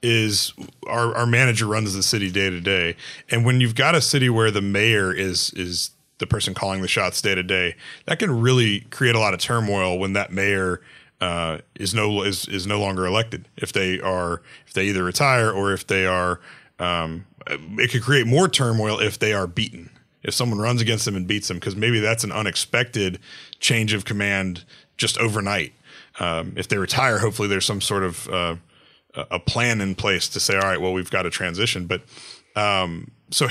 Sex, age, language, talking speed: male, 30-49, English, 200 wpm